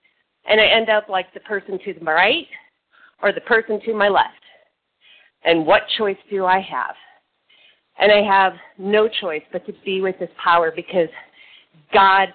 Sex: female